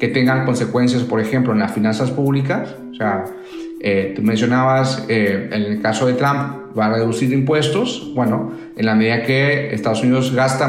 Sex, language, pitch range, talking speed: male, Spanish, 110-140 Hz, 180 wpm